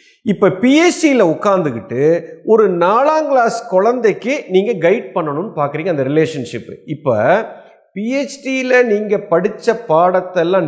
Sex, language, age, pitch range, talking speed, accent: male, Tamil, 50-69, 145-215 Hz, 100 wpm, native